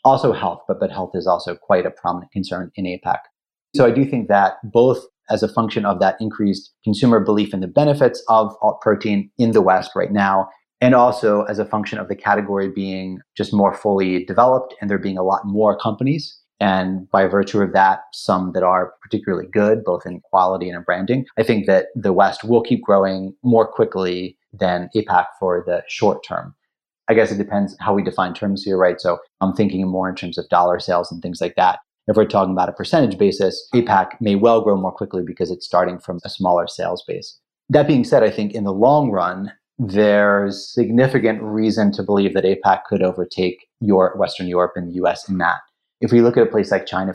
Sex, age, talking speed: male, 30-49, 215 wpm